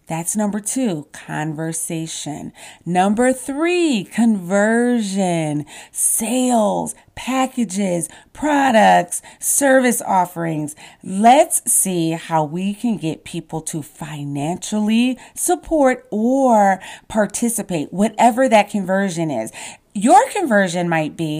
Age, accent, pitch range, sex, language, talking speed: 30-49, American, 170-240 Hz, female, English, 90 wpm